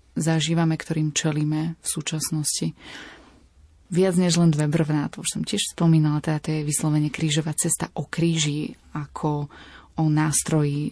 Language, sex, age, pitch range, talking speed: Slovak, female, 20-39, 155-170 Hz, 145 wpm